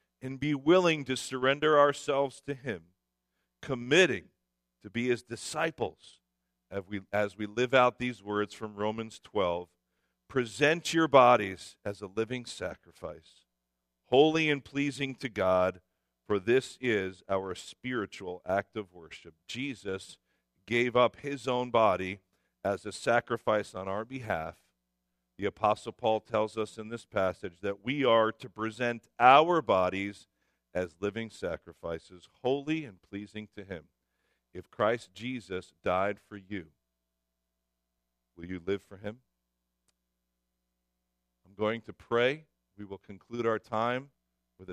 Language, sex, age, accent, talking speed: English, male, 50-69, American, 135 wpm